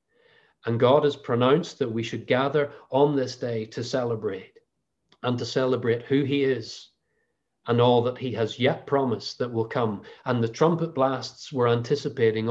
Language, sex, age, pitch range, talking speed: English, male, 40-59, 120-150 Hz, 170 wpm